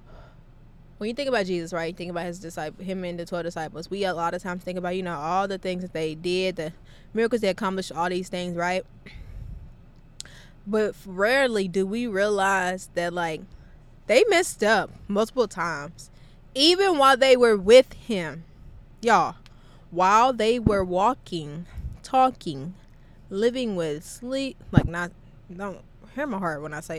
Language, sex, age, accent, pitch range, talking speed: English, female, 20-39, American, 155-230 Hz, 160 wpm